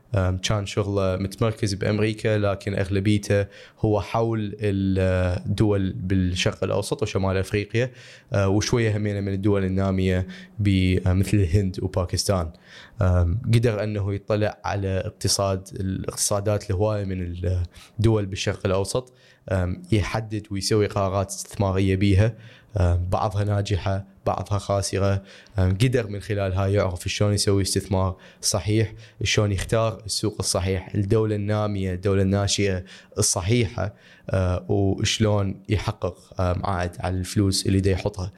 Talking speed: 105 wpm